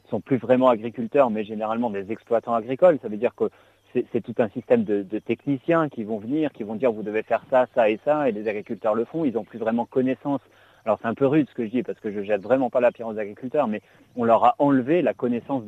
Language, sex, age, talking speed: French, male, 40-59, 270 wpm